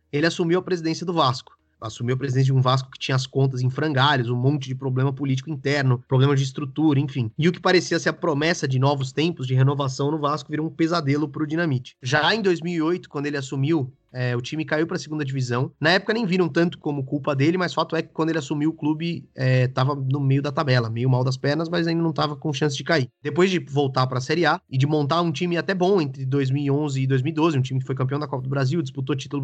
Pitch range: 135-165 Hz